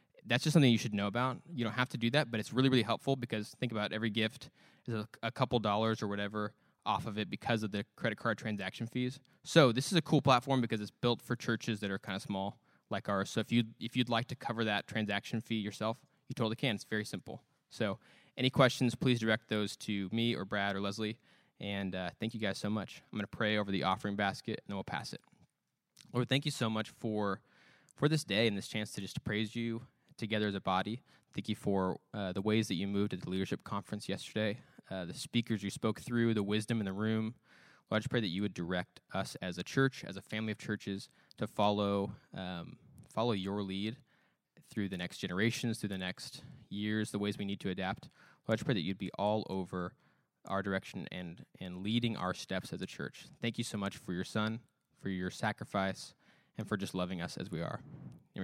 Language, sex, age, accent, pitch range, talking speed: English, male, 20-39, American, 100-120 Hz, 235 wpm